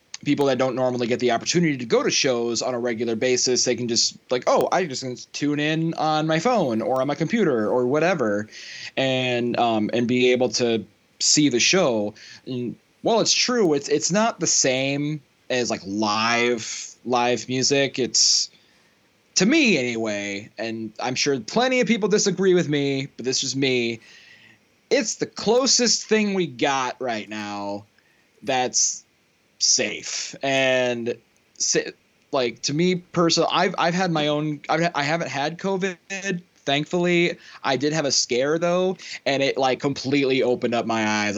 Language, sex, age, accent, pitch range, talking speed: English, male, 20-39, American, 115-155 Hz, 165 wpm